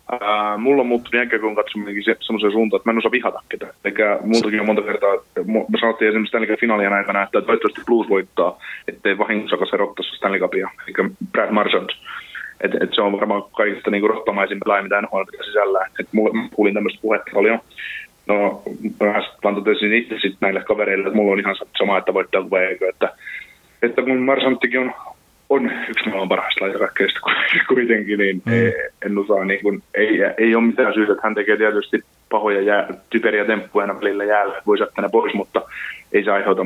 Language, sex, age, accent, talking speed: Finnish, male, 20-39, native, 170 wpm